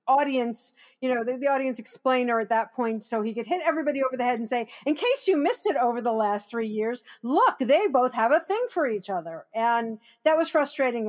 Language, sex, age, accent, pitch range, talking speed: English, female, 50-69, American, 200-245 Hz, 235 wpm